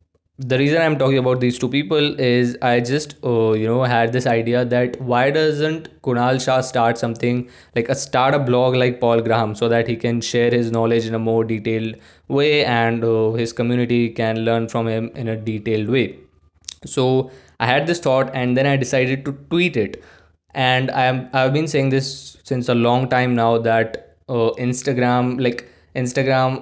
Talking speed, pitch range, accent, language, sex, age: 190 wpm, 115-130 Hz, native, Hindi, male, 20-39